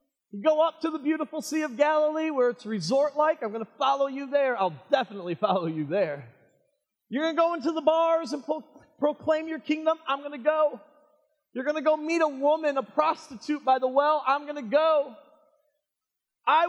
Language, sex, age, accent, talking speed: English, male, 30-49, American, 200 wpm